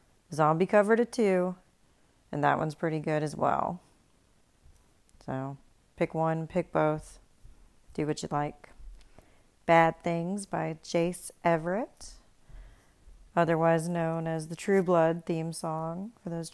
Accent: American